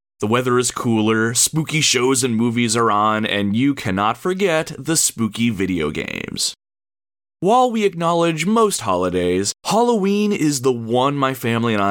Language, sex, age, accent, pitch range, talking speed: English, male, 30-49, American, 100-135 Hz, 150 wpm